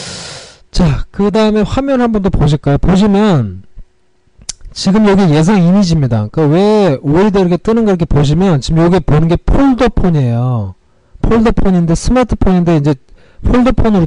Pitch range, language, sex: 130-195 Hz, Korean, male